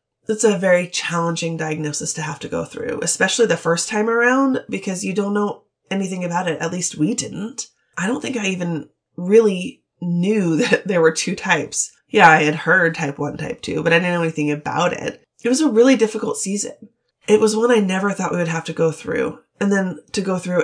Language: English